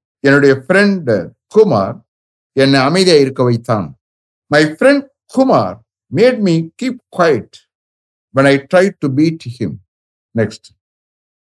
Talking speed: 85 wpm